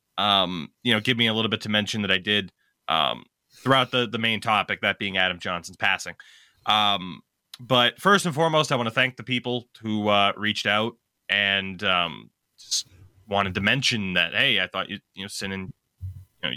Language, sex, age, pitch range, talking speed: English, male, 20-39, 105-140 Hz, 205 wpm